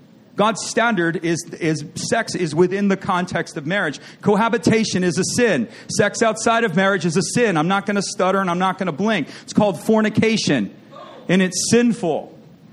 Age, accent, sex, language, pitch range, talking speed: 40-59, American, male, English, 170-220 Hz, 185 wpm